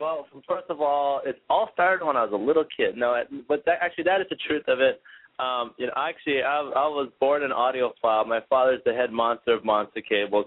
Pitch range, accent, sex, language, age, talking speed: 110-135 Hz, American, male, English, 20-39, 240 wpm